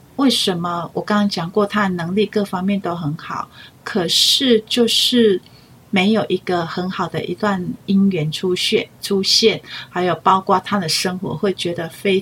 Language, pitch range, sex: Chinese, 170-215 Hz, female